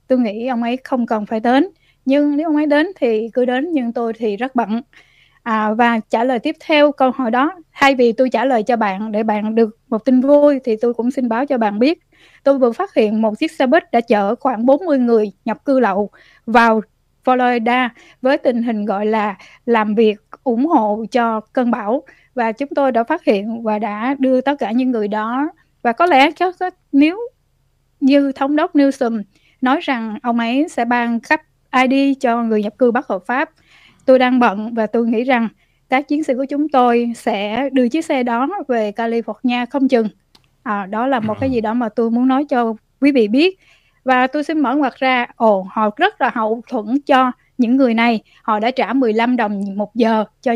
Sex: female